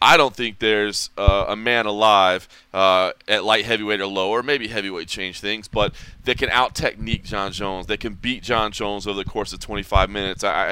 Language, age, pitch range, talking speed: English, 30-49, 100-130 Hz, 215 wpm